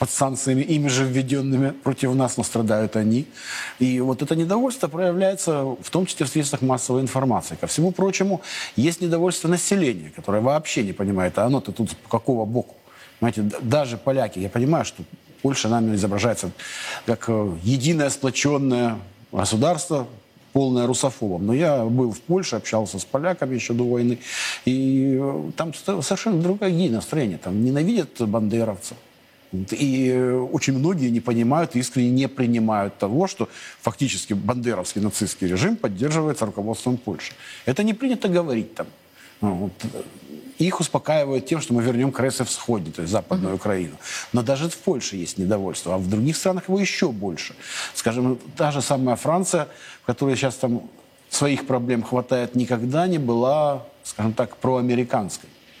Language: Russian